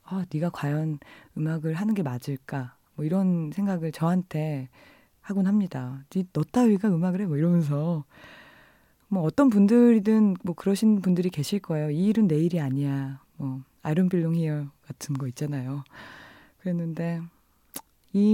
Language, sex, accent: Korean, female, native